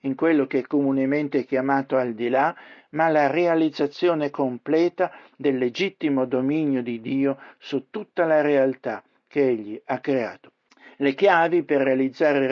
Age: 60-79